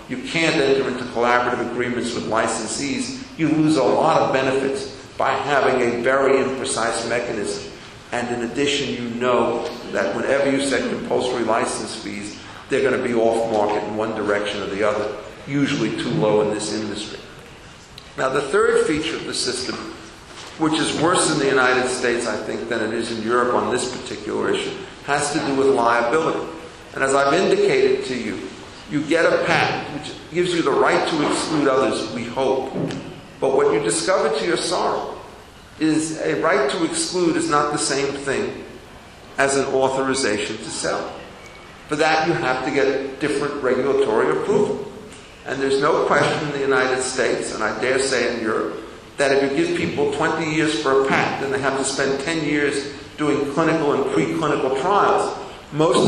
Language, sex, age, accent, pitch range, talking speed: Italian, male, 50-69, American, 120-150 Hz, 180 wpm